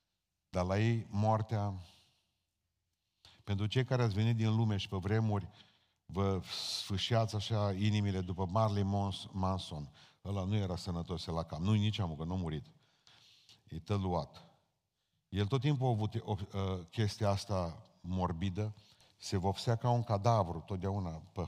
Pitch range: 90-110 Hz